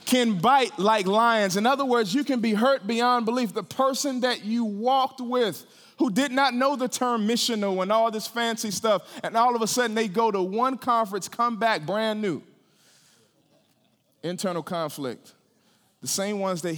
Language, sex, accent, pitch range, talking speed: English, male, American, 165-220 Hz, 180 wpm